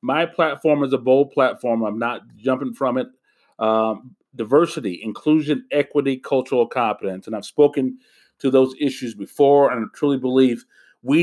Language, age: English, 40-59